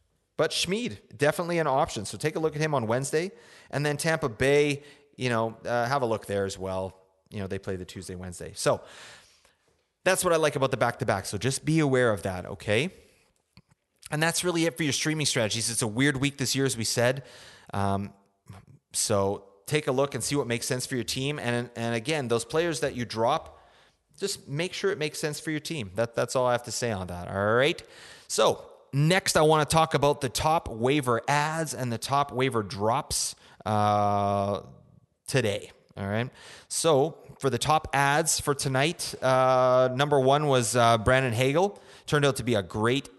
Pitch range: 110-145 Hz